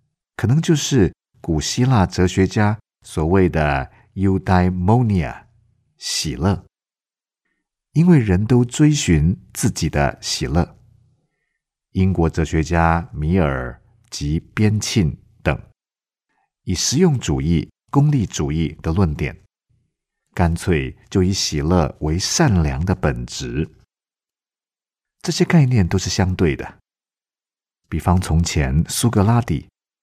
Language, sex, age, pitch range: Korean, male, 50-69, 80-115 Hz